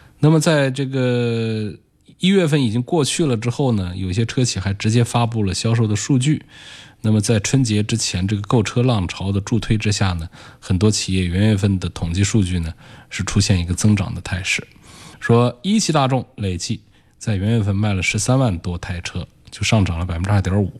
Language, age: Chinese, 20-39